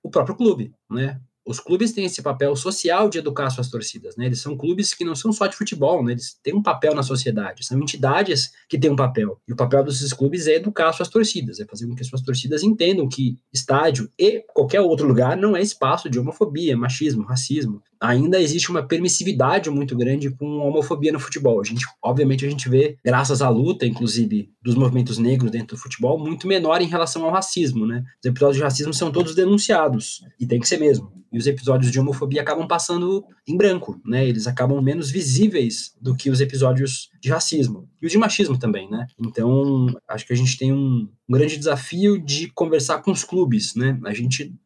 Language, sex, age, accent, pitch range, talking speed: Portuguese, male, 20-39, Brazilian, 125-160 Hz, 210 wpm